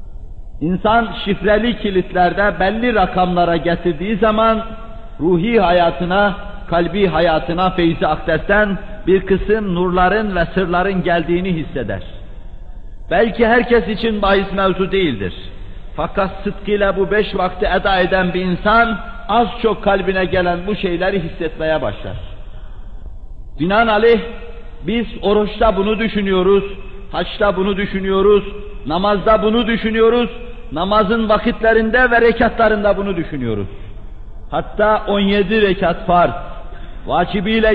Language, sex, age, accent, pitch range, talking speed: Turkish, male, 50-69, native, 170-215 Hz, 105 wpm